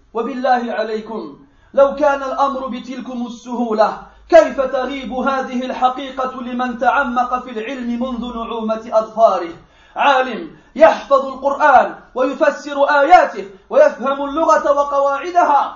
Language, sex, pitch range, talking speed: French, male, 265-330 Hz, 100 wpm